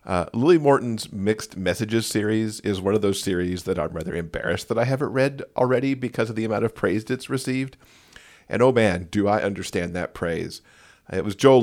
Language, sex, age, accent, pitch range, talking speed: English, male, 40-59, American, 95-115 Hz, 200 wpm